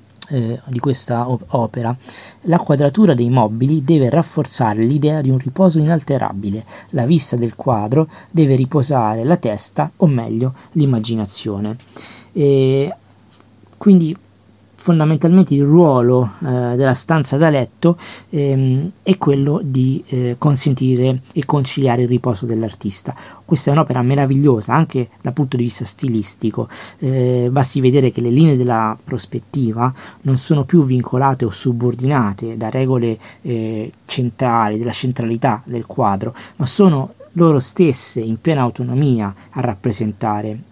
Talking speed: 130 wpm